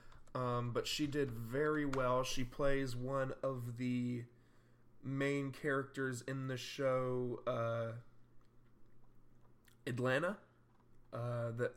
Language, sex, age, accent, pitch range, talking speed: English, male, 20-39, American, 120-140 Hz, 100 wpm